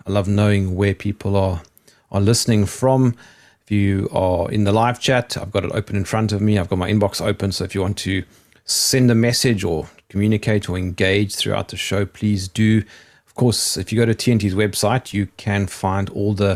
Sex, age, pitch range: male, 30-49, 95-115 Hz